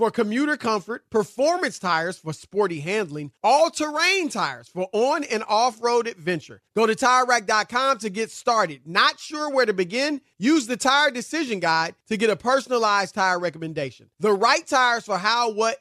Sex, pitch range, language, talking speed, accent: male, 195-270 Hz, English, 165 wpm, American